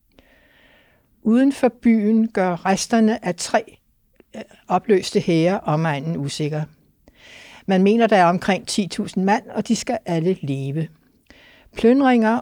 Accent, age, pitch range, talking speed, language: native, 60-79, 165-215 Hz, 115 wpm, Danish